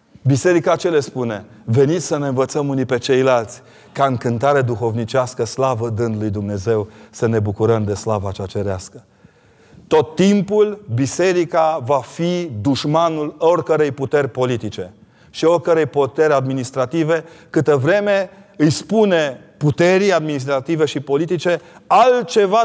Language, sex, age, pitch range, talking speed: Romanian, male, 40-59, 115-160 Hz, 125 wpm